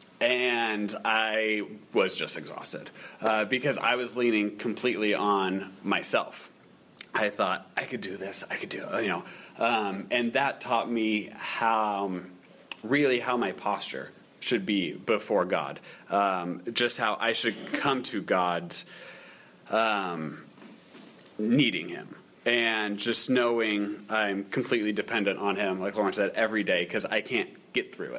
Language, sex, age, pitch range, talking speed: English, male, 30-49, 105-125 Hz, 145 wpm